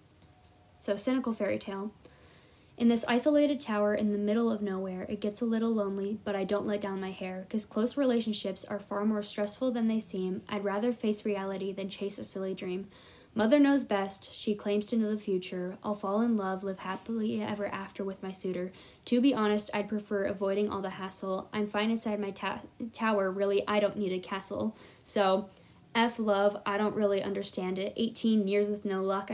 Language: English